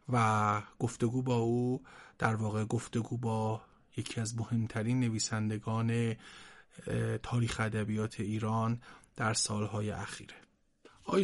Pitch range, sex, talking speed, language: 115-130 Hz, male, 100 wpm, Persian